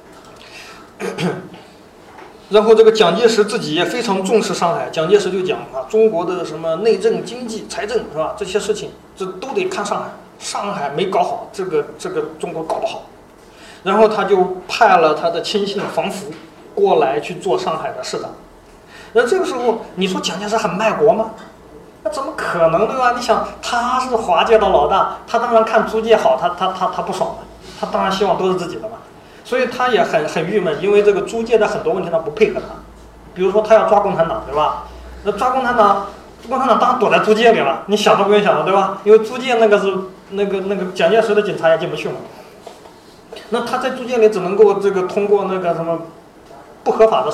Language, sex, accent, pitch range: Chinese, male, native, 190-225 Hz